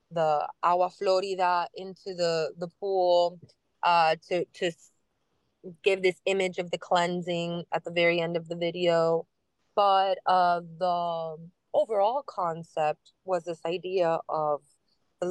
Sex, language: female, English